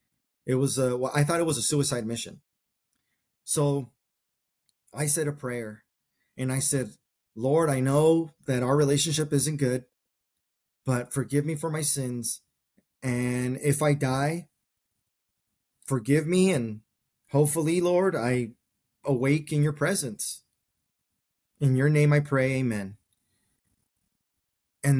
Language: English